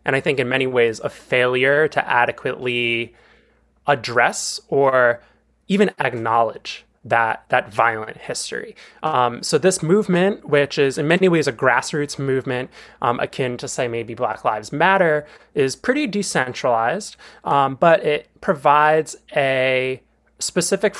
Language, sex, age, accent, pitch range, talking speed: English, male, 20-39, American, 125-155 Hz, 135 wpm